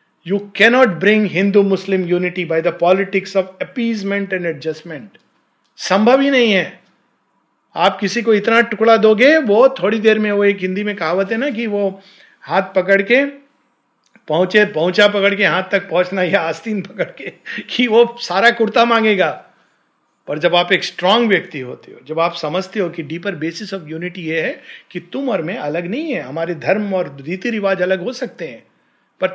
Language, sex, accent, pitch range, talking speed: Hindi, male, native, 155-210 Hz, 185 wpm